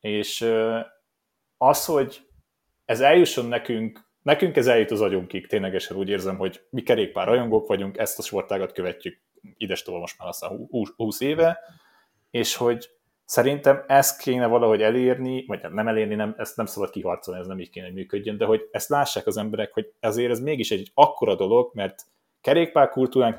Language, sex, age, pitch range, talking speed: Hungarian, male, 30-49, 105-135 Hz, 170 wpm